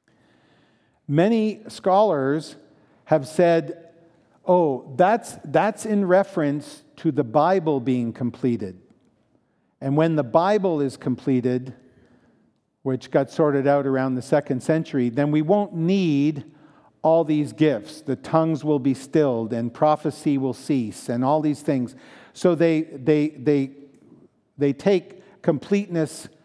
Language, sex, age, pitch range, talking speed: English, male, 50-69, 130-160 Hz, 125 wpm